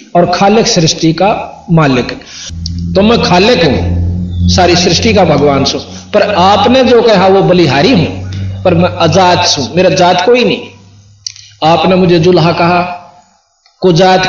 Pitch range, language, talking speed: 150-195 Hz, Hindi, 145 wpm